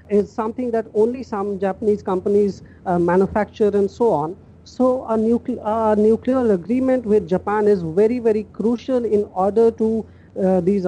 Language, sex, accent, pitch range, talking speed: English, female, Indian, 195-235 Hz, 155 wpm